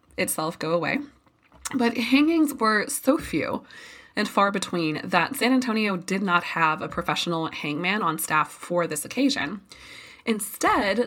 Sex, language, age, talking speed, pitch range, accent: female, English, 20-39, 140 wpm, 175-255 Hz, American